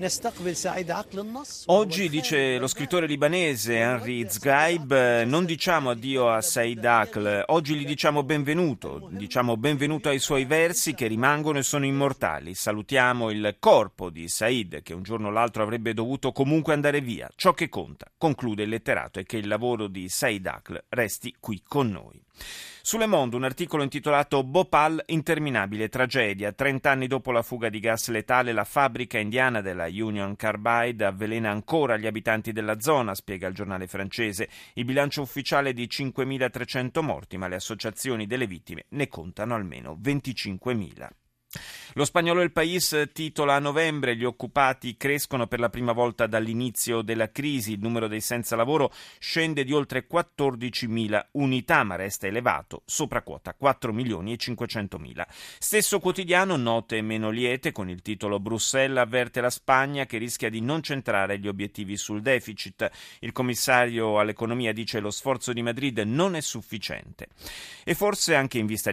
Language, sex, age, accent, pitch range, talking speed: Italian, male, 30-49, native, 110-145 Hz, 160 wpm